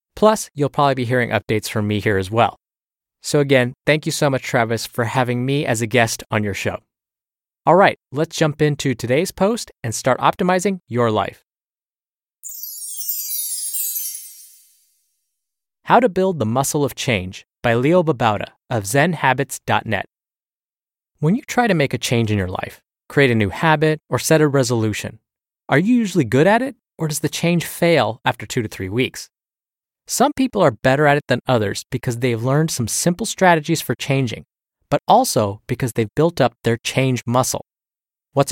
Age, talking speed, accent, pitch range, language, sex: 20-39, 175 wpm, American, 115-160 Hz, English, male